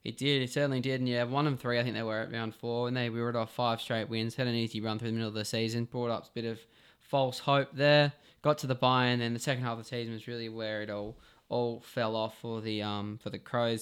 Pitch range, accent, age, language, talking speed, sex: 110-125 Hz, Australian, 10-29, English, 300 wpm, male